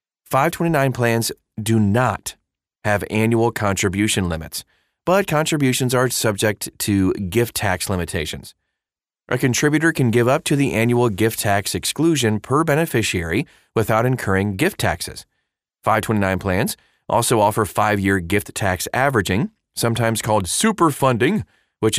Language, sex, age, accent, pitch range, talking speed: English, male, 30-49, American, 100-130 Hz, 125 wpm